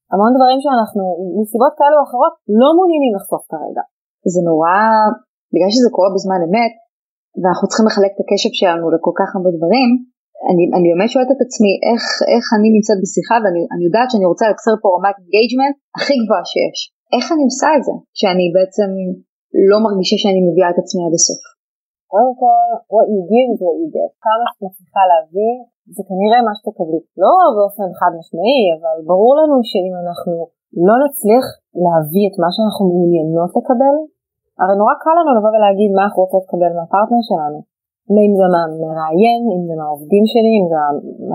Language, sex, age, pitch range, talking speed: Hebrew, female, 30-49, 185-250 Hz, 175 wpm